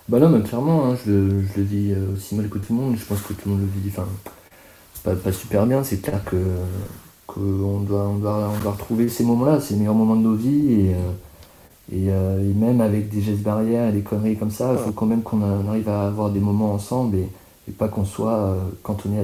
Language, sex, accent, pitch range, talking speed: French, male, French, 95-110 Hz, 250 wpm